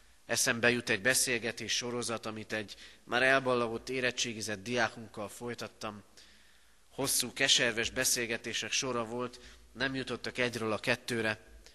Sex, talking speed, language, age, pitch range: male, 110 wpm, Hungarian, 30-49, 90-115 Hz